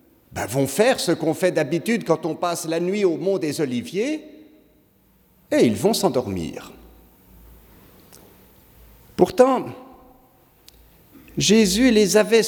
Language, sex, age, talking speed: French, male, 60-79, 115 wpm